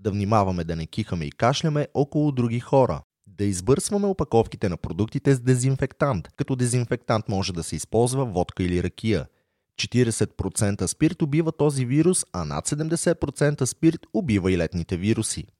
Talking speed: 150 wpm